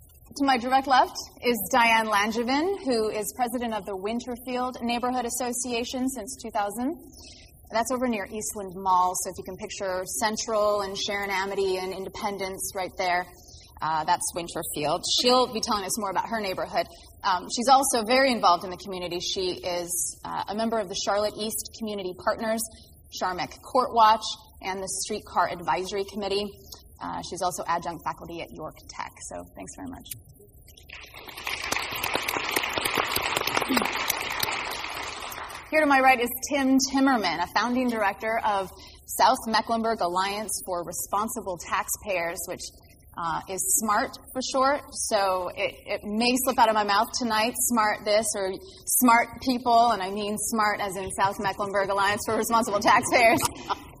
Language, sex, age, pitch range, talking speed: English, female, 20-39, 190-240 Hz, 150 wpm